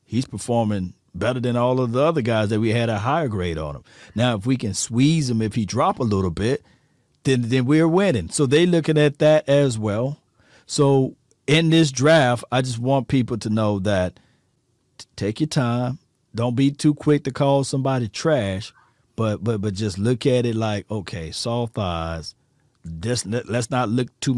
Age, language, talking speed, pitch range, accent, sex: 40-59, English, 190 wpm, 110-140 Hz, American, male